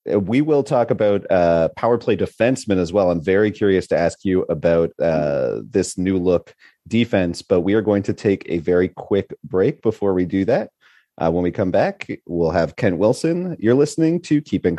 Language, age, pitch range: English, 30-49, 95-115 Hz